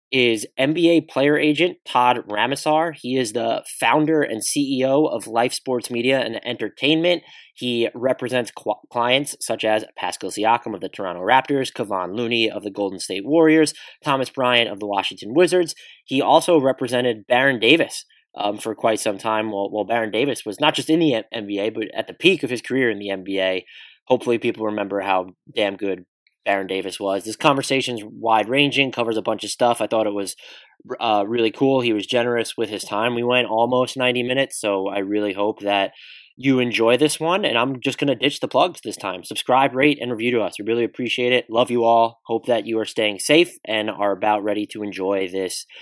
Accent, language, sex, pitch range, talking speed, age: American, English, male, 105-135 Hz, 200 wpm, 20-39